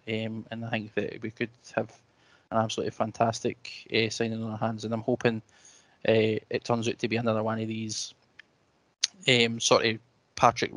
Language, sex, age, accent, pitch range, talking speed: English, male, 20-39, British, 115-125 Hz, 185 wpm